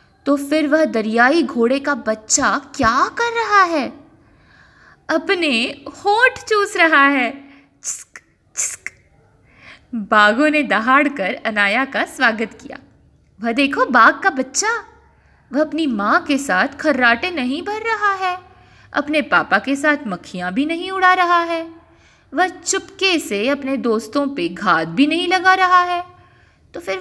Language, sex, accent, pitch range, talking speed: Hindi, female, native, 220-345 Hz, 140 wpm